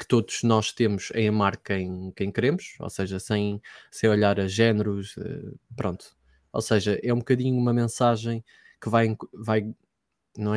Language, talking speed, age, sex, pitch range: Portuguese, 160 wpm, 20-39, male, 100-120 Hz